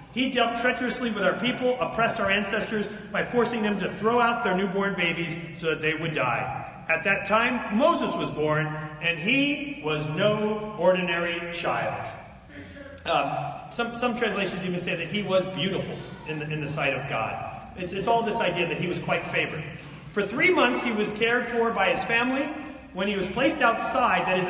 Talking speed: 190 wpm